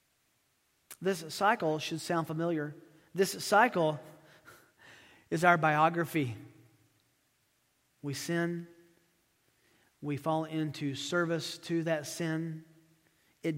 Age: 40-59